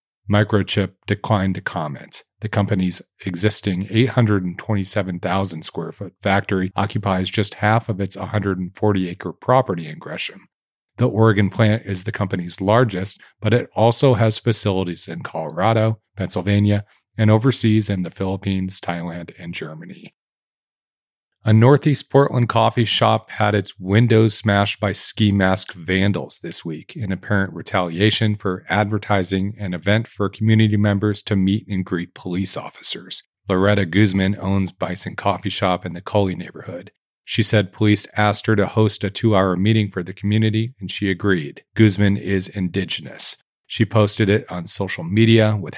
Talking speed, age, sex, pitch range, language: 140 wpm, 40-59, male, 95-110 Hz, English